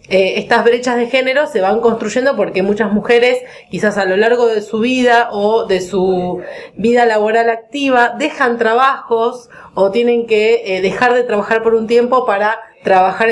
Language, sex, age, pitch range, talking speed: Spanish, female, 20-39, 185-235 Hz, 170 wpm